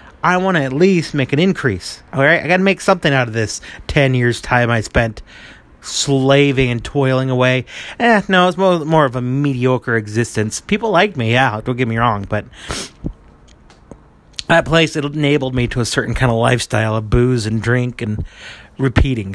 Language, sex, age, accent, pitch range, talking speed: English, male, 30-49, American, 115-145 Hz, 190 wpm